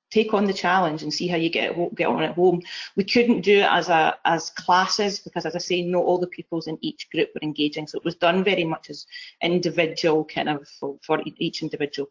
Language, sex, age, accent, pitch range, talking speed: English, female, 30-49, British, 160-185 Hz, 240 wpm